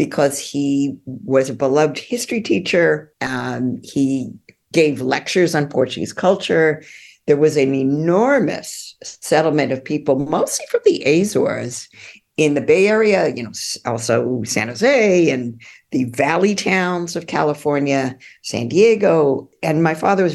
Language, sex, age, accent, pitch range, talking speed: English, female, 50-69, American, 140-200 Hz, 135 wpm